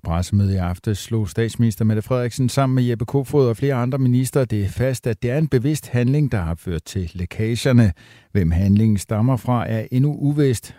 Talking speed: 195 wpm